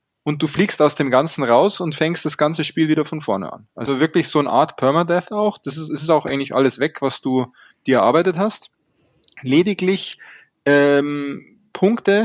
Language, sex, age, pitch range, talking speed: German, male, 20-39, 130-160 Hz, 185 wpm